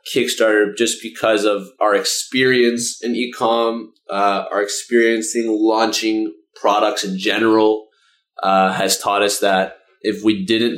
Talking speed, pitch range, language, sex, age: 130 wpm, 100-115 Hz, English, male, 20-39